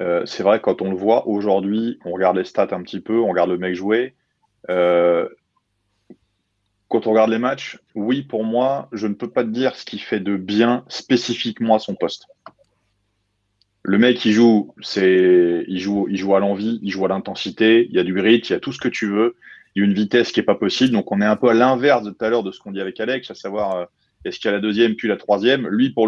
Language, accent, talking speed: French, French, 255 wpm